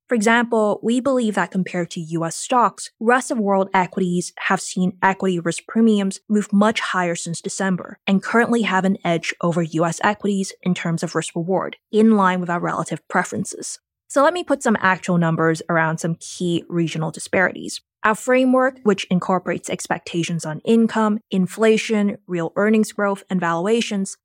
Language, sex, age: English, female, 20-39